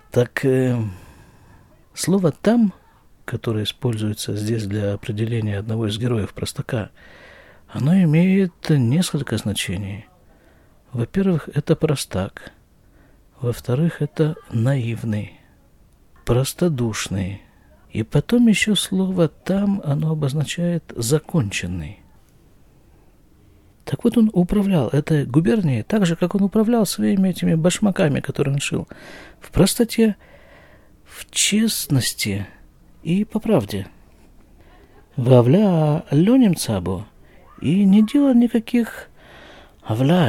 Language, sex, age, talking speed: Russian, male, 50-69, 95 wpm